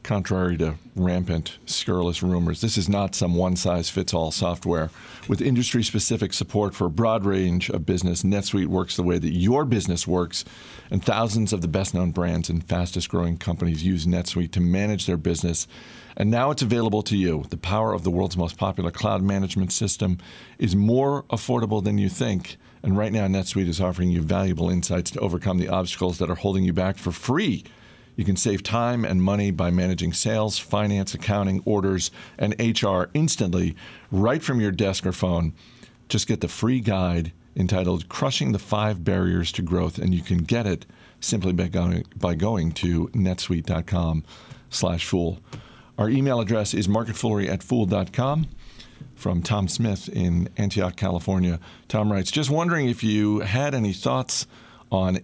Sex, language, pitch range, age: male, English, 90-110 Hz, 50-69